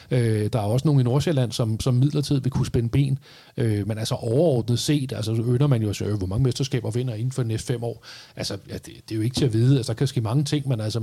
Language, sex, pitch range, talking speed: Danish, male, 120-145 Hz, 265 wpm